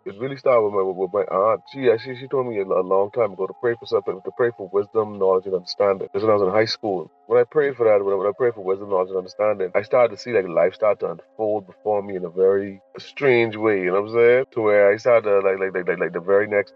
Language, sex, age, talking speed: English, male, 30-49, 300 wpm